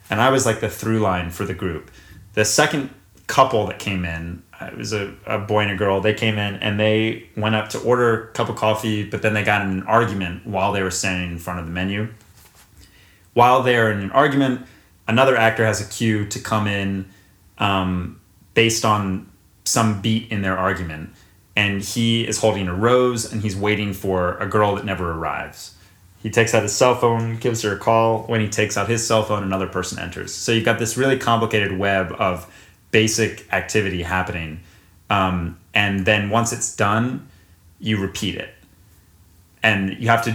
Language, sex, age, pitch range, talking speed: English, male, 30-49, 90-110 Hz, 200 wpm